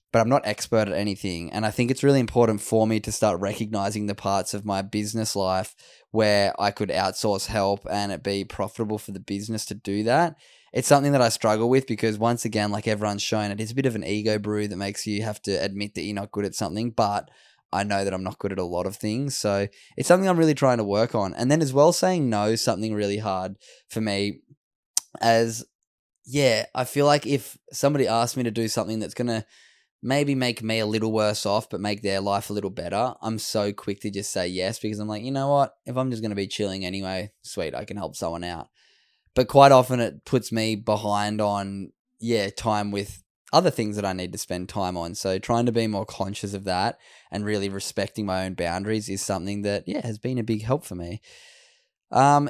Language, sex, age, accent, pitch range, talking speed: English, male, 10-29, Australian, 100-120 Hz, 235 wpm